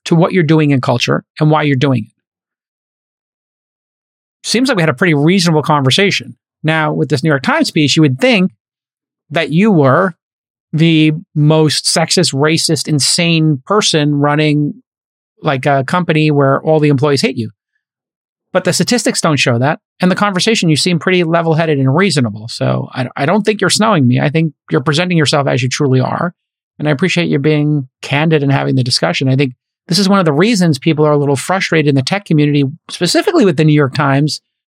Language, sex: English, male